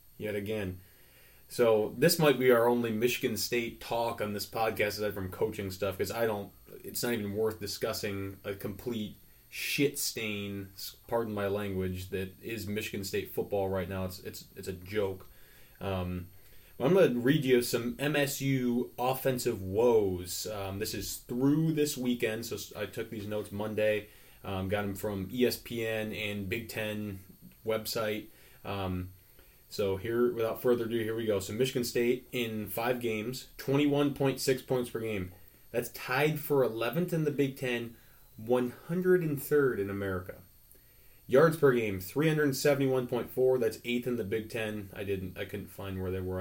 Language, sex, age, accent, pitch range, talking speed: English, male, 20-39, American, 95-125 Hz, 160 wpm